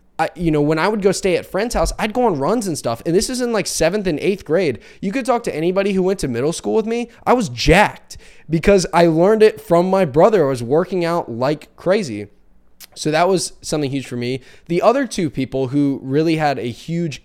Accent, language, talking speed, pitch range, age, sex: American, English, 245 wpm, 120-170 Hz, 10-29, male